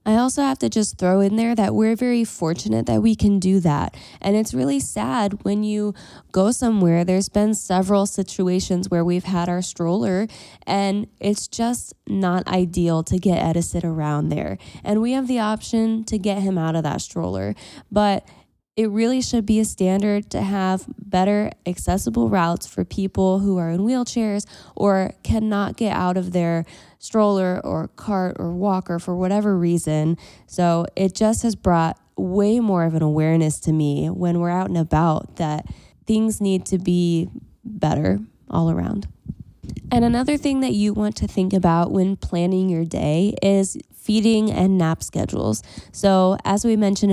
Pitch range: 170-210 Hz